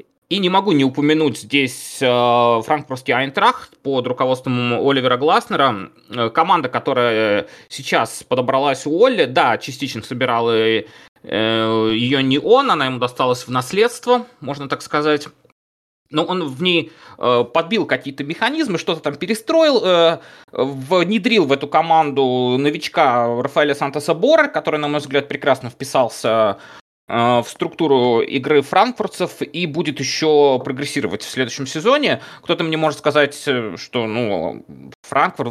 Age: 20-39